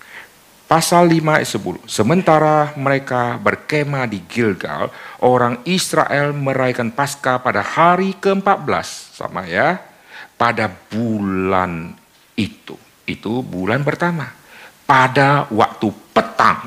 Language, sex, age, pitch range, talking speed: Indonesian, male, 50-69, 105-165 Hz, 95 wpm